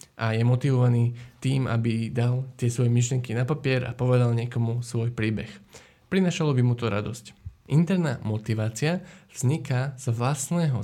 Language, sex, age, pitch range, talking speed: Slovak, male, 20-39, 115-140 Hz, 145 wpm